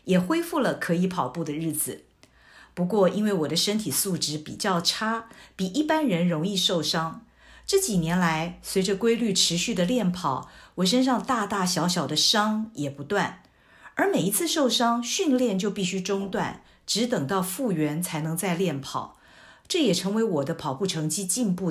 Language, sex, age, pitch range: Chinese, female, 50-69, 160-220 Hz